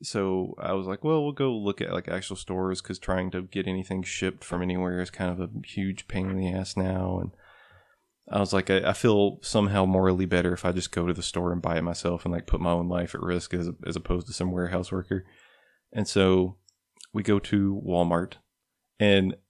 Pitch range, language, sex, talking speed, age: 90-100 Hz, English, male, 225 wpm, 20-39